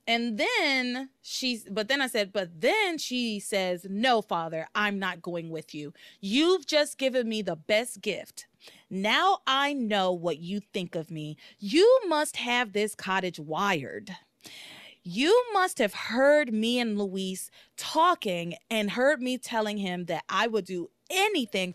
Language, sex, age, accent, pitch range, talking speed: English, female, 30-49, American, 190-290 Hz, 155 wpm